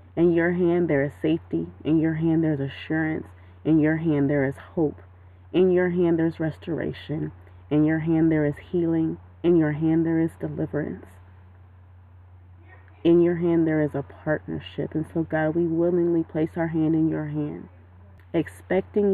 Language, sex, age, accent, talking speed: English, female, 30-49, American, 165 wpm